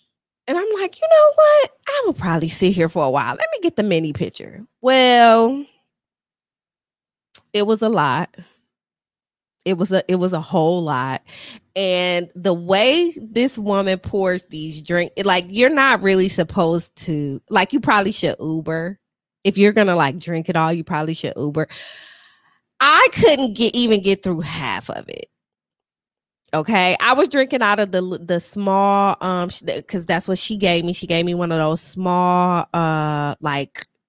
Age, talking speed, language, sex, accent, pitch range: 20-39, 170 wpm, English, female, American, 165-230 Hz